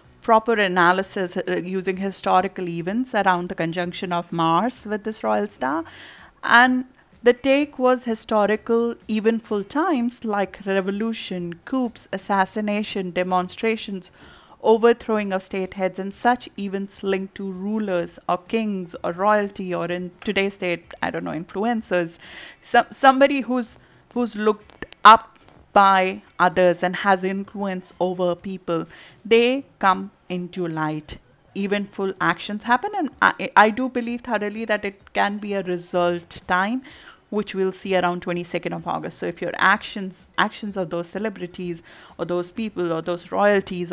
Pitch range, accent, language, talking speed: 180-225 Hz, Indian, English, 145 wpm